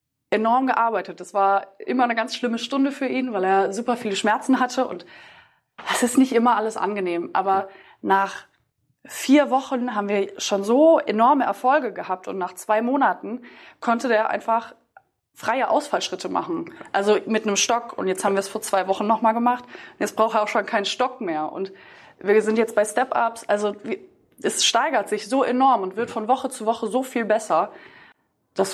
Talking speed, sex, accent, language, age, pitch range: 185 wpm, female, German, German, 20-39, 205-255 Hz